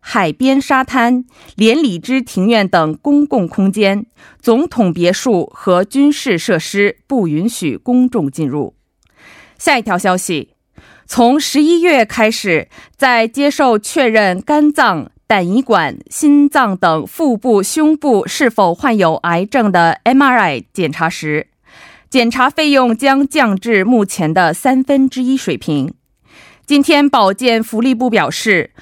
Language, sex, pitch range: Korean, female, 190-270 Hz